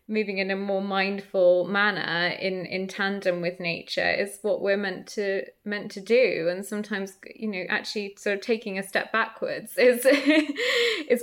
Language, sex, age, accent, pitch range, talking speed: English, female, 20-39, British, 195-235 Hz, 170 wpm